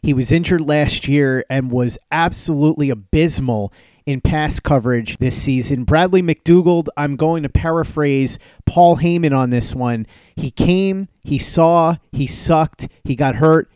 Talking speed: 150 wpm